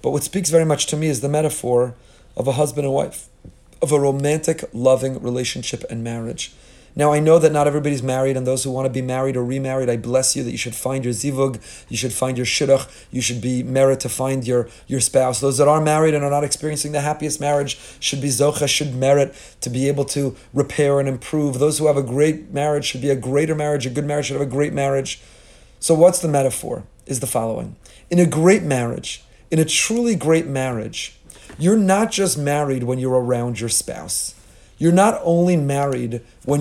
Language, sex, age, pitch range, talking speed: English, male, 40-59, 125-150 Hz, 220 wpm